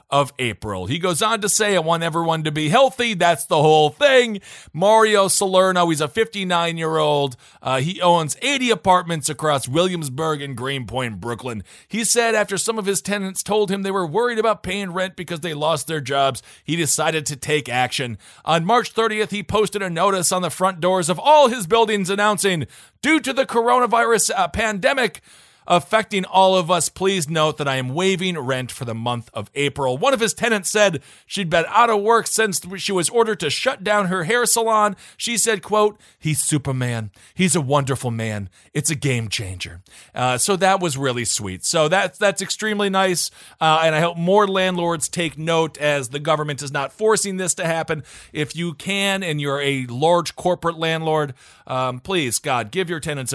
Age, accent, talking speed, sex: 40-59, American, 195 wpm, male